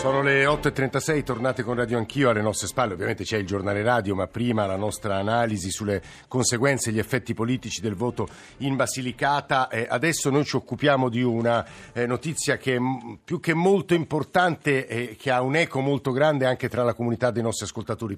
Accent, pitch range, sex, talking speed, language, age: native, 105-130 Hz, male, 190 wpm, Italian, 50-69